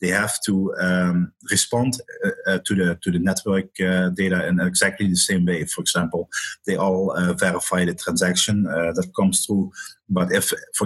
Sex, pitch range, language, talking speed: male, 90-110 Hz, English, 190 wpm